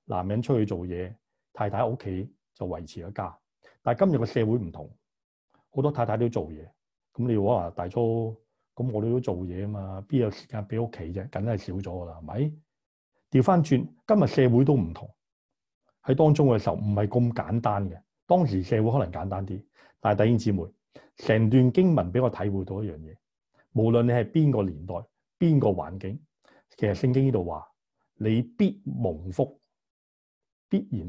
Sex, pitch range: male, 95-120 Hz